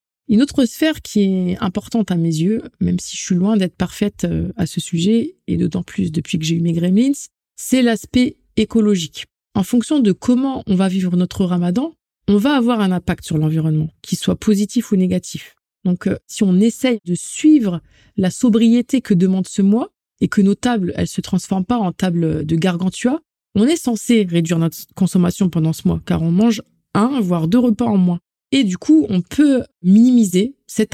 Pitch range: 180-225 Hz